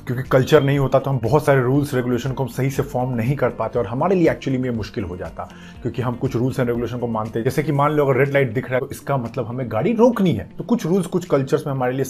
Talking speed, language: 300 wpm, Hindi